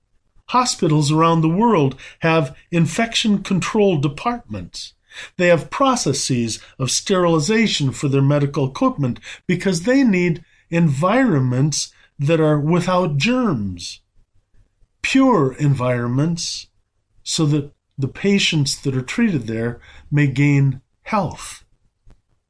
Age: 50-69